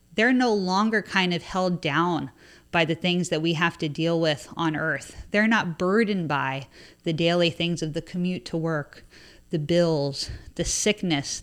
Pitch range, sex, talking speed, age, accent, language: 170-210 Hz, female, 180 wpm, 30-49, American, English